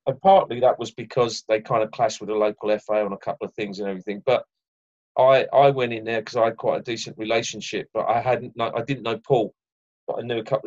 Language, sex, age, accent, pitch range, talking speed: English, male, 40-59, British, 105-125 Hz, 255 wpm